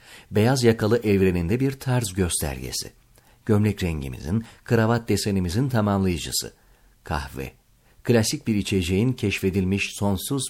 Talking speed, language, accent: 95 wpm, Turkish, native